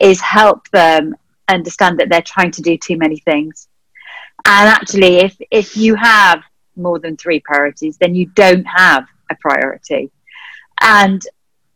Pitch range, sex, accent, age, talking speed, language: 175-225 Hz, female, British, 40-59, 150 wpm, English